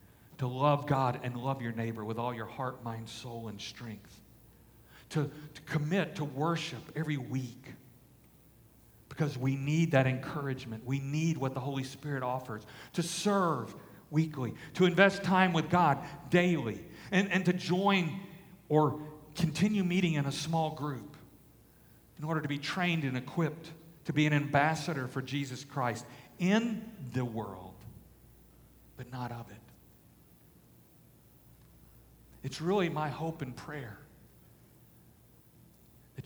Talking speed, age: 135 wpm, 50-69